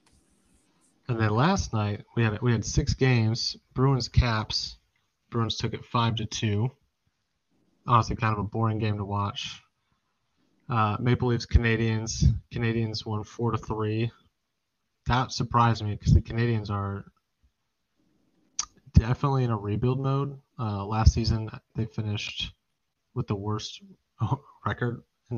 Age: 20-39